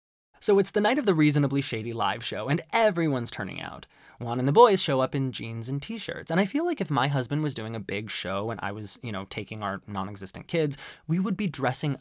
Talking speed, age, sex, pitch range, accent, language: 245 wpm, 20-39, male, 110-165 Hz, American, English